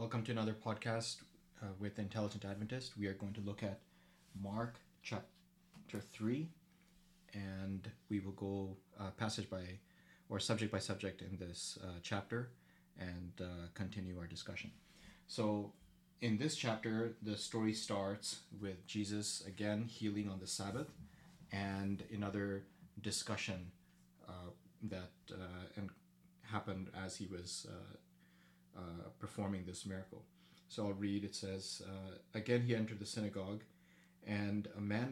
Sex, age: male, 30-49